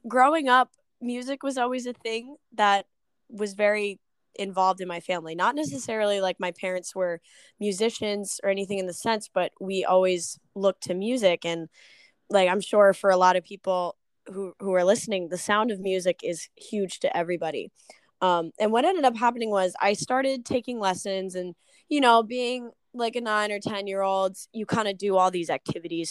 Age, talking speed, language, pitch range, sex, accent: 10-29, 190 wpm, English, 180-225 Hz, female, American